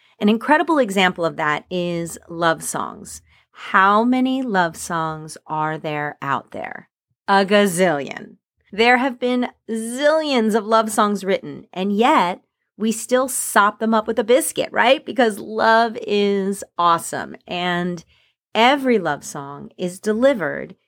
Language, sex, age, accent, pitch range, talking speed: English, female, 30-49, American, 175-235 Hz, 135 wpm